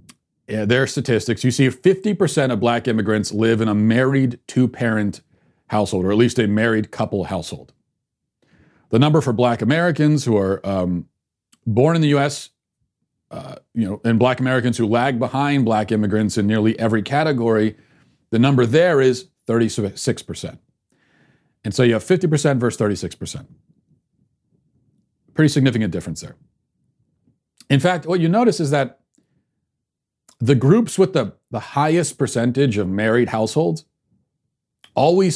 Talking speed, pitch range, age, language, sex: 135 wpm, 110-145 Hz, 40-59, English, male